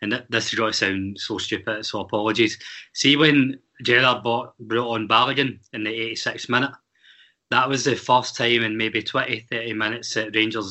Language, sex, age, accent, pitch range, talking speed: English, male, 20-39, British, 110-120 Hz, 185 wpm